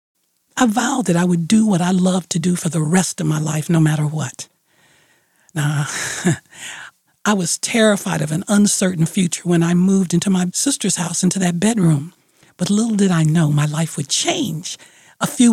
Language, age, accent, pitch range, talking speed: English, 60-79, American, 170-230 Hz, 190 wpm